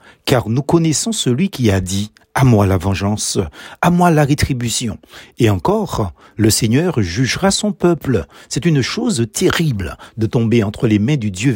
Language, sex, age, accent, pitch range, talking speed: French, male, 60-79, French, 110-155 Hz, 190 wpm